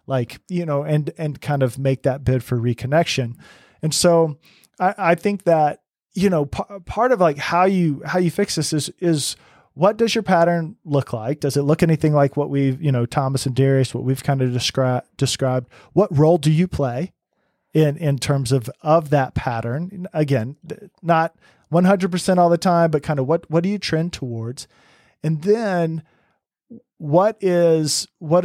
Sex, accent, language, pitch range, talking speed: male, American, English, 130-165 Hz, 185 wpm